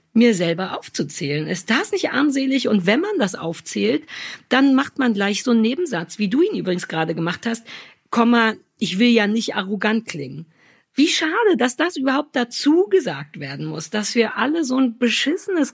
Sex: female